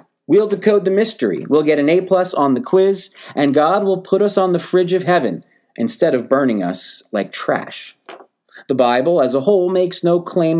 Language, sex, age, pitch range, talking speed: English, male, 40-59, 135-195 Hz, 200 wpm